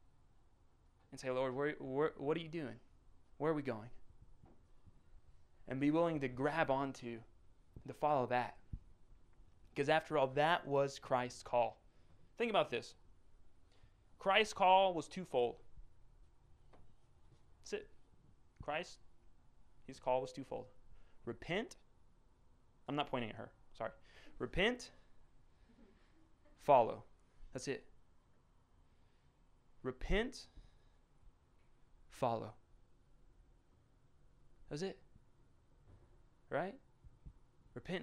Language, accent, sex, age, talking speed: English, American, male, 20-39, 95 wpm